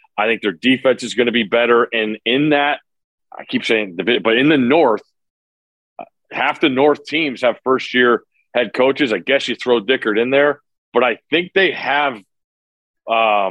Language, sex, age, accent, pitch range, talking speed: English, male, 40-59, American, 110-135 Hz, 190 wpm